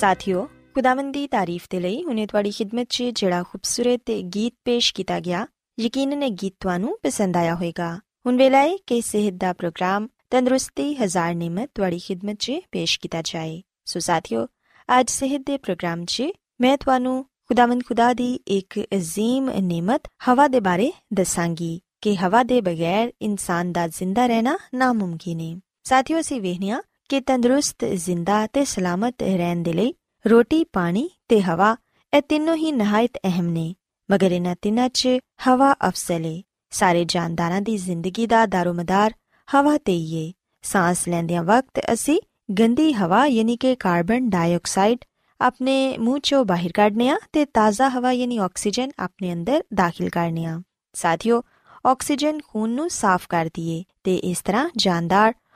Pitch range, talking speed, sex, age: 180-255 Hz, 100 wpm, female, 20-39